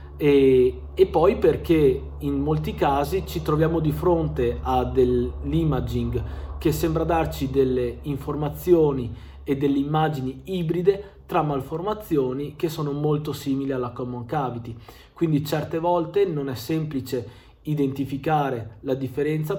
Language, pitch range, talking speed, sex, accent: Italian, 125-160 Hz, 125 wpm, male, native